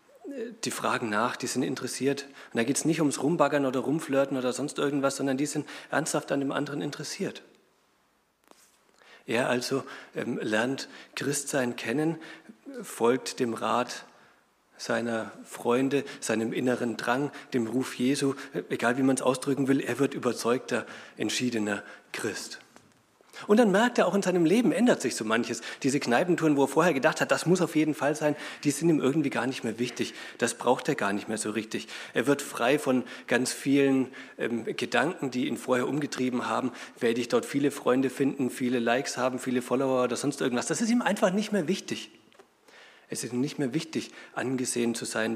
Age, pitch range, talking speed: 40-59, 120-145 Hz, 185 wpm